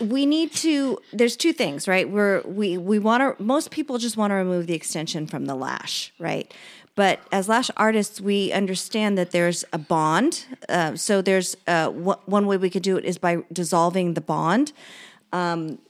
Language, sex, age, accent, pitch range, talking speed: English, female, 30-49, American, 175-225 Hz, 195 wpm